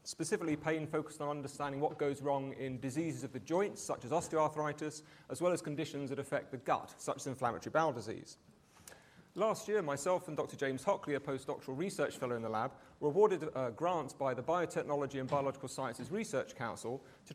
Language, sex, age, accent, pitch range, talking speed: English, male, 40-59, British, 135-170 Hz, 195 wpm